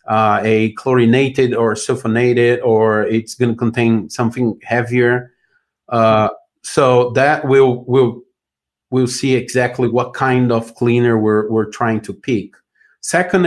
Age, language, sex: 40-59, English, male